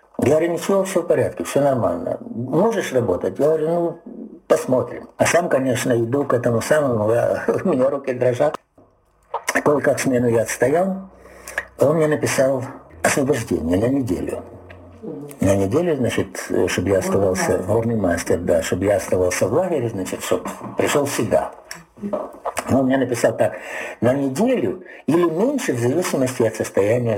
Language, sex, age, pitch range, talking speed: Russian, male, 60-79, 115-185 Hz, 150 wpm